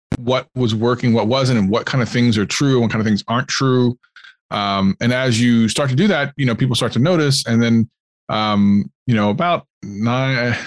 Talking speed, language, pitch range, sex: 225 wpm, English, 105-130 Hz, male